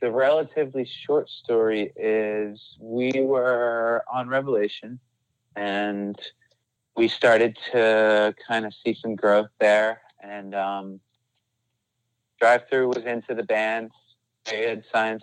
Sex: male